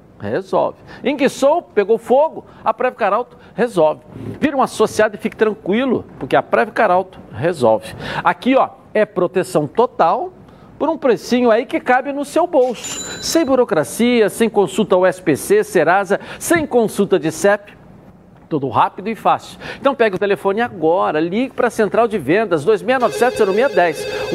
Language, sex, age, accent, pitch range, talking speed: Portuguese, male, 60-79, Brazilian, 185-250 Hz, 145 wpm